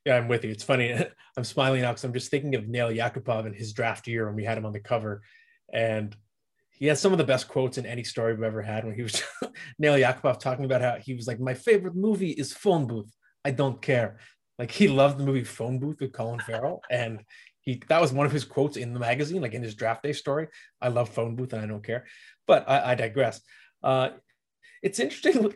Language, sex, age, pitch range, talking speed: English, male, 20-39, 120-145 Hz, 245 wpm